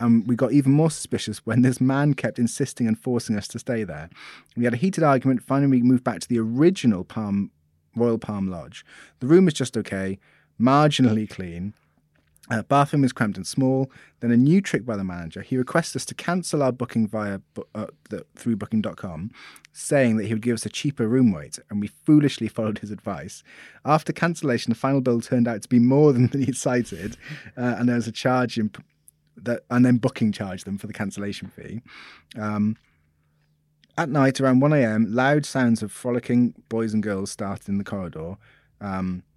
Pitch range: 100-130 Hz